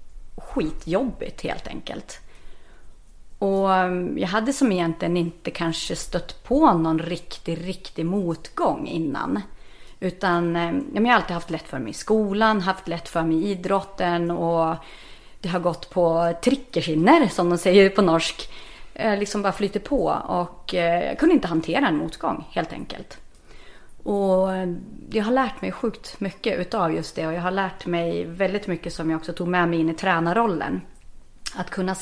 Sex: female